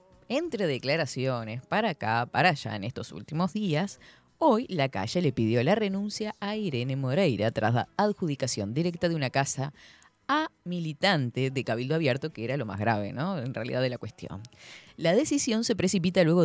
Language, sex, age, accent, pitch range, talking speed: Spanish, female, 20-39, Argentinian, 130-180 Hz, 175 wpm